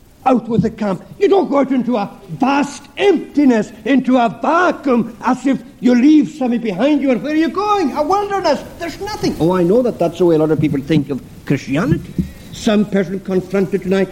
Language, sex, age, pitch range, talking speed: English, male, 60-79, 180-300 Hz, 210 wpm